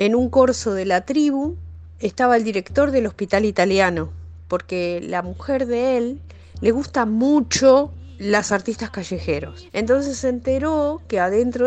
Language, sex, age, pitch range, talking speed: Spanish, female, 40-59, 155-260 Hz, 145 wpm